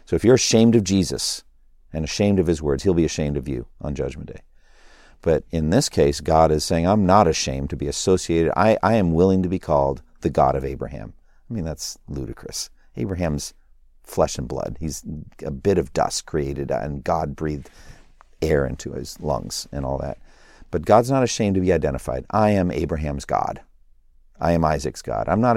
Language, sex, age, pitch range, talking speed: English, male, 50-69, 70-95 Hz, 195 wpm